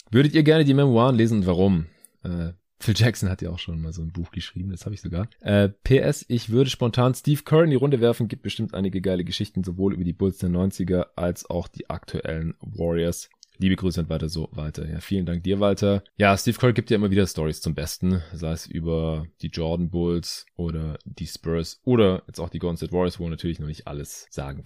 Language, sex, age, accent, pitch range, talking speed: German, male, 20-39, German, 85-100 Hz, 230 wpm